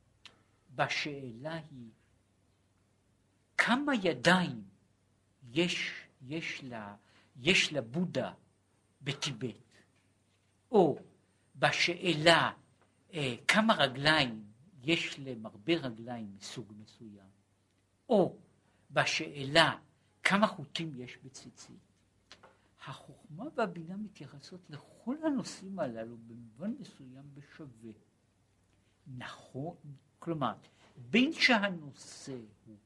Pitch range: 105-165 Hz